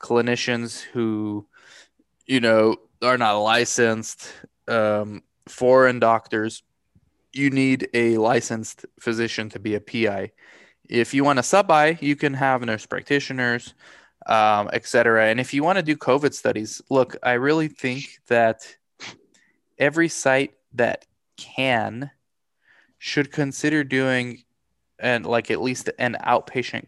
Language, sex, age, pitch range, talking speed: English, male, 20-39, 110-135 Hz, 130 wpm